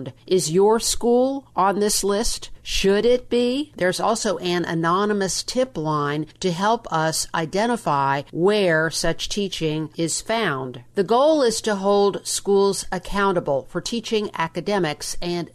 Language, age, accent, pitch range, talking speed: English, 50-69, American, 170-210 Hz, 135 wpm